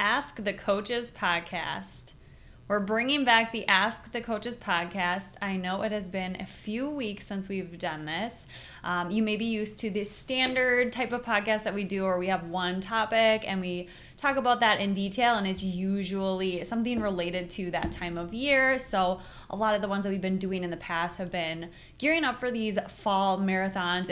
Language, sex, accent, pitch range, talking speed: English, female, American, 180-220 Hz, 200 wpm